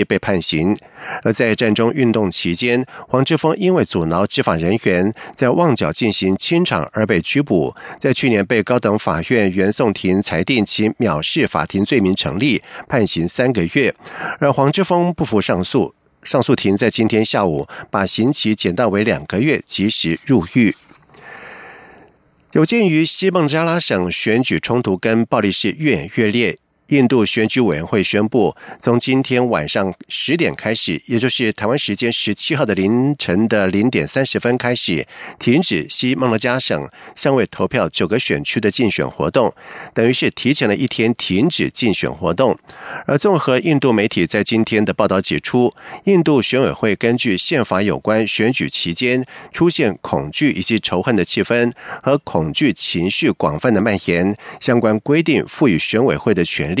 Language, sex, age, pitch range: German, male, 50-69, 105-135 Hz